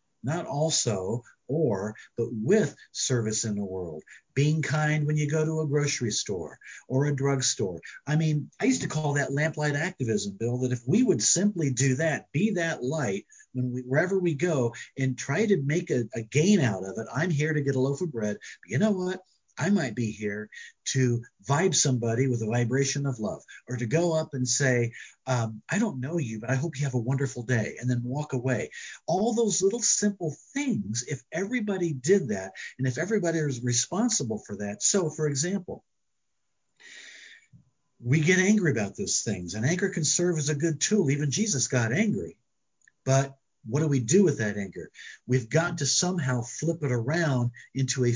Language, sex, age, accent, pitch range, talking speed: English, male, 50-69, American, 125-165 Hz, 195 wpm